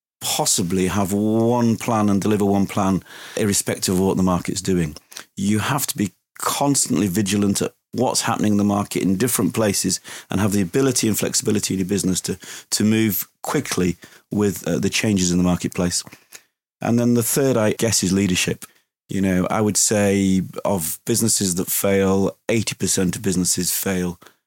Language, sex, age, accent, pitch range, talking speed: English, male, 30-49, British, 95-105 Hz, 170 wpm